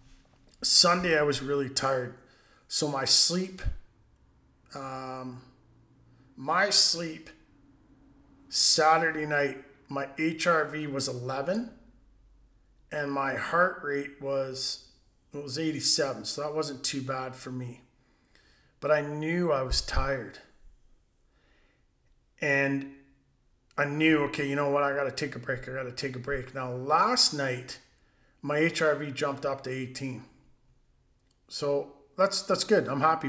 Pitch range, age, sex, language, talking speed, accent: 130-150 Hz, 40-59, male, English, 125 wpm, American